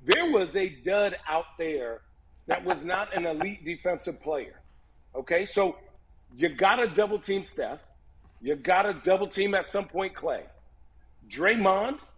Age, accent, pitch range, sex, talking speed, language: 50-69, American, 175-210 Hz, male, 145 wpm, English